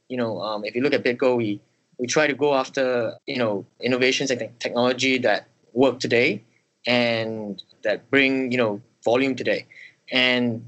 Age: 20-39